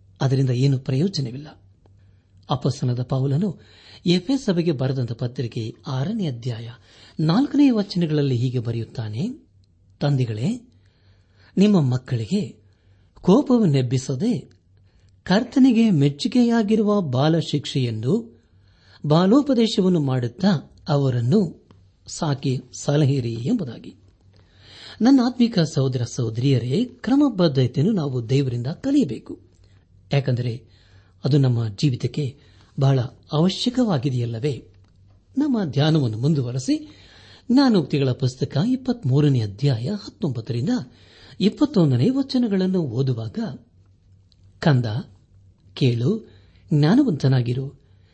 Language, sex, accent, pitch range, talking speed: Kannada, male, native, 105-170 Hz, 65 wpm